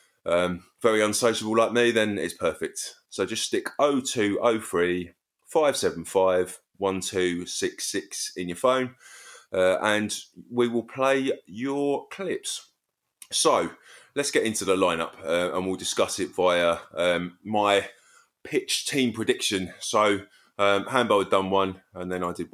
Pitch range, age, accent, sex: 90-110 Hz, 20-39, British, male